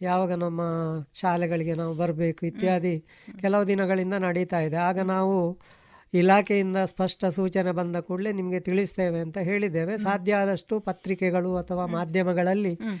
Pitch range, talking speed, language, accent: 175-195 Hz, 120 wpm, Kannada, native